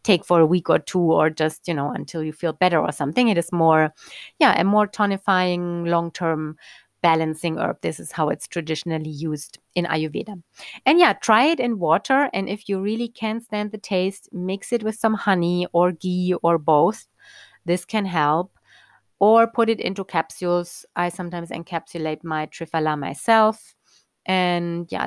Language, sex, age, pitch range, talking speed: English, female, 30-49, 165-215 Hz, 175 wpm